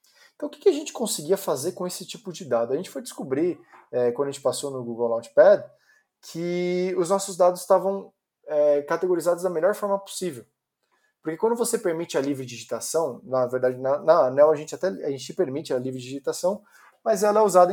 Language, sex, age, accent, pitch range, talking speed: Portuguese, male, 20-39, Brazilian, 130-195 Hz, 200 wpm